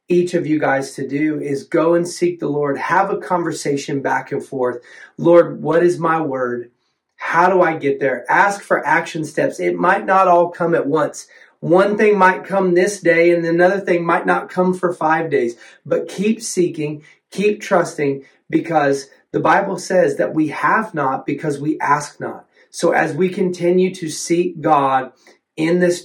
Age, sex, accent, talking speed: 30-49, male, American, 185 wpm